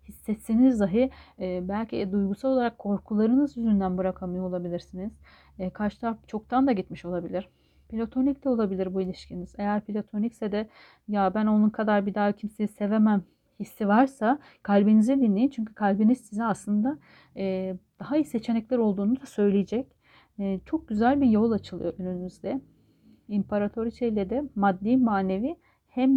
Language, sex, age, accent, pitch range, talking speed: Turkish, female, 40-59, native, 190-230 Hz, 130 wpm